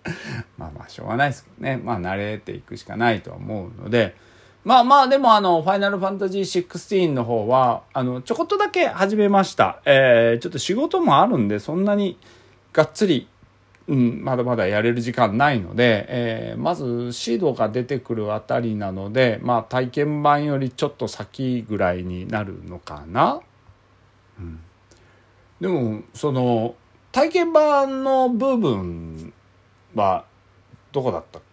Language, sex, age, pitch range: Japanese, male, 40-59, 95-155 Hz